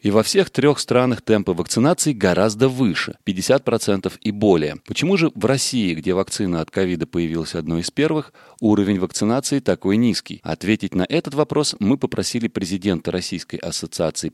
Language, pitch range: Russian, 90-125 Hz